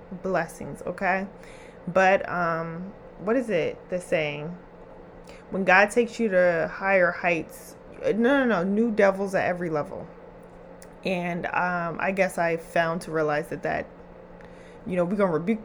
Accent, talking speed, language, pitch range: American, 150 wpm, English, 180-225 Hz